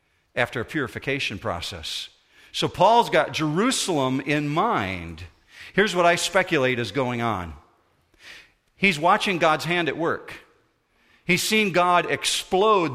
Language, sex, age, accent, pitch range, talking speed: English, male, 50-69, American, 120-160 Hz, 125 wpm